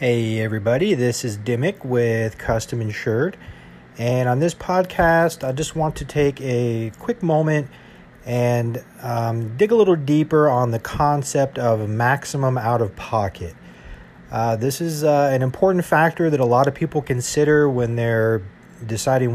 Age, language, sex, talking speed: 40-59, English, male, 145 wpm